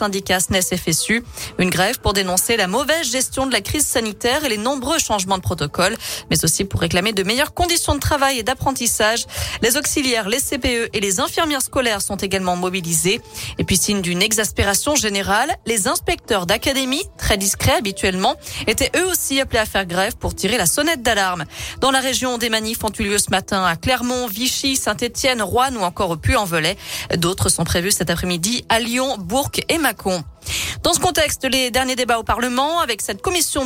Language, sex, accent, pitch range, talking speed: French, female, French, 195-265 Hz, 190 wpm